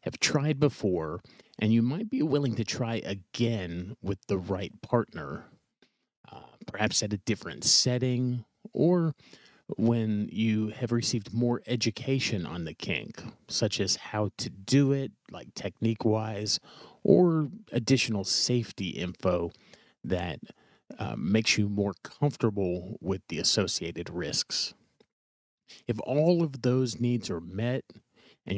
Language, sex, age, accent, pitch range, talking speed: English, male, 30-49, American, 100-130 Hz, 130 wpm